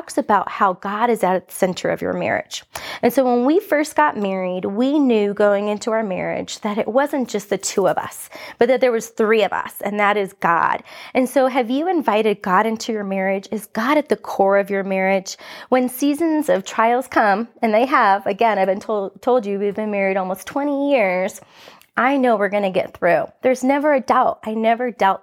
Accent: American